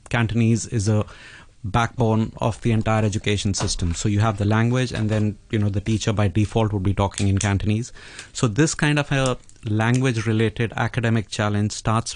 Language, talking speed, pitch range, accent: English, 185 wpm, 105-120 Hz, Indian